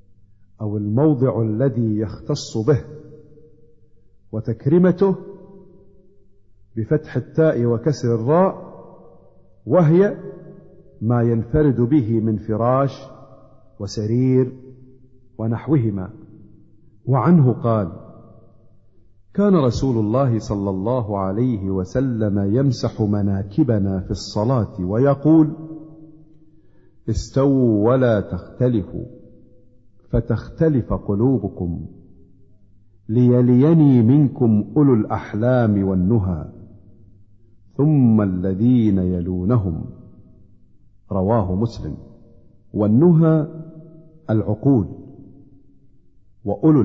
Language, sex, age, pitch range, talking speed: Arabic, male, 50-69, 105-135 Hz, 65 wpm